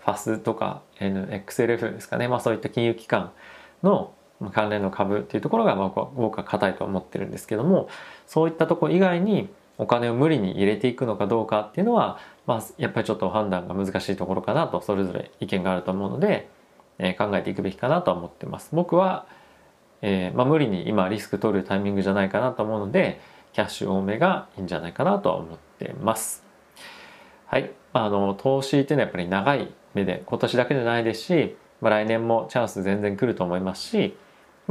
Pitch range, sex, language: 100-125 Hz, male, Japanese